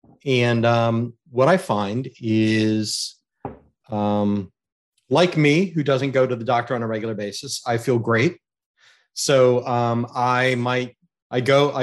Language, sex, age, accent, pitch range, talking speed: English, male, 30-49, American, 115-140 Hz, 140 wpm